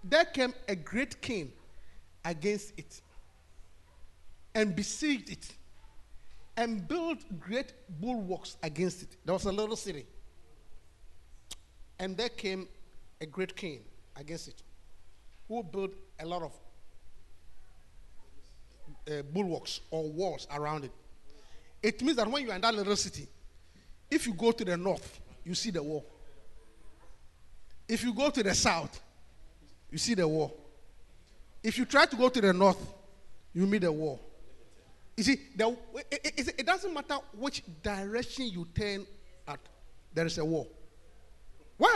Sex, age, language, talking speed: male, 50-69, English, 145 wpm